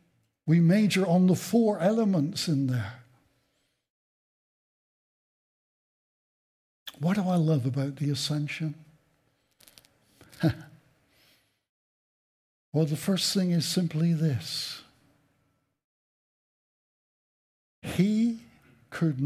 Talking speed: 75 wpm